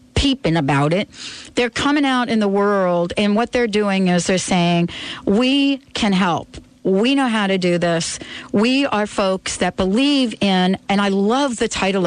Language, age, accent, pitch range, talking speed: English, 40-59, American, 180-250 Hz, 175 wpm